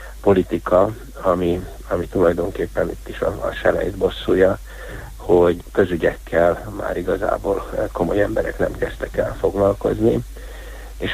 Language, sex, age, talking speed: Hungarian, male, 60-79, 115 wpm